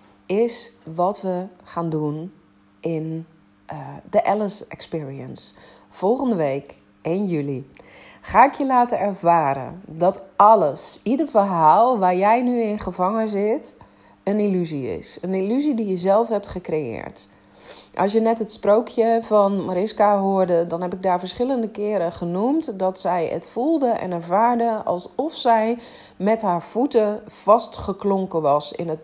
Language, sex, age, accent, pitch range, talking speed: Dutch, female, 40-59, Dutch, 150-230 Hz, 145 wpm